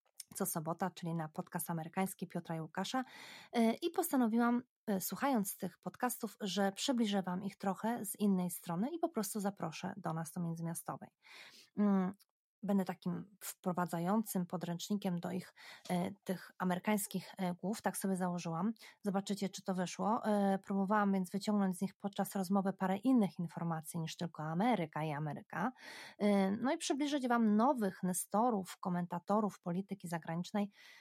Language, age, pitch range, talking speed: Polish, 20-39, 180-215 Hz, 135 wpm